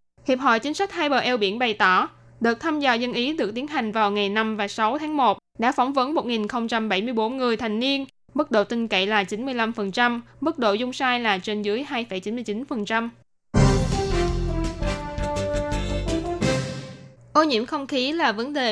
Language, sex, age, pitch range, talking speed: Vietnamese, female, 10-29, 210-260 Hz, 170 wpm